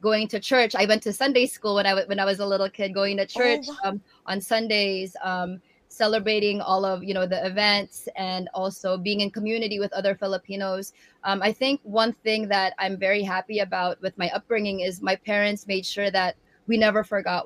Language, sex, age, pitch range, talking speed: Filipino, female, 20-39, 190-210 Hz, 205 wpm